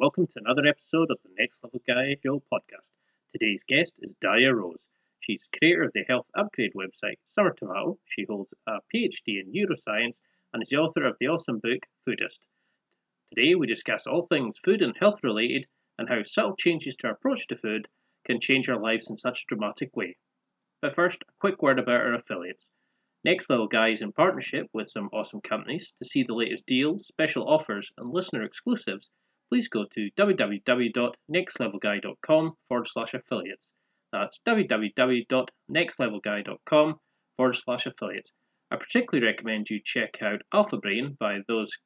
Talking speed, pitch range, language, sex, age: 170 wpm, 120-185 Hz, English, male, 30-49